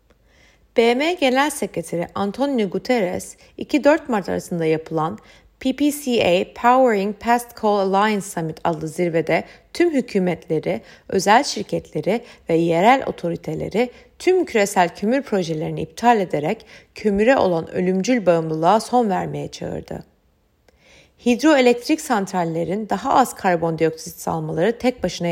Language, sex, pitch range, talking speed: Turkish, female, 165-240 Hz, 105 wpm